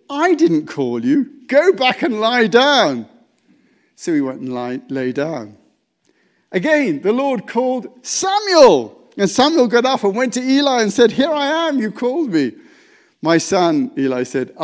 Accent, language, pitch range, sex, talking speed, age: British, English, 150-250 Hz, male, 165 wpm, 50-69